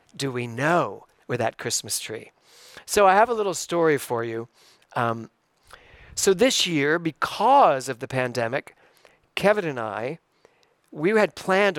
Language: English